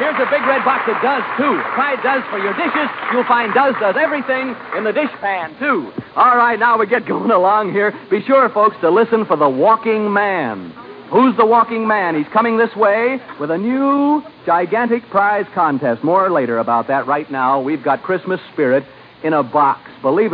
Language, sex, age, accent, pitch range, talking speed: English, male, 60-79, American, 135-225 Hz, 200 wpm